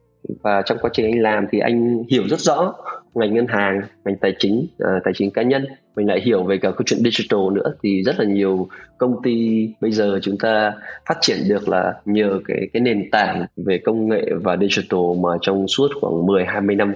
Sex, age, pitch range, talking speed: male, 20-39, 100-120 Hz, 215 wpm